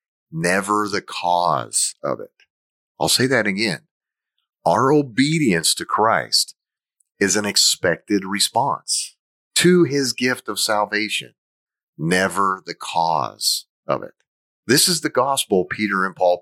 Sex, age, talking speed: male, 40-59, 125 wpm